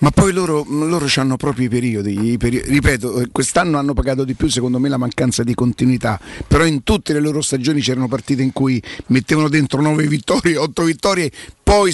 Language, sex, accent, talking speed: Italian, male, native, 195 wpm